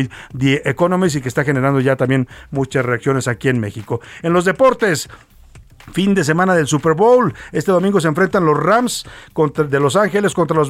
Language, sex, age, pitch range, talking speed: Spanish, male, 50-69, 130-165 Hz, 185 wpm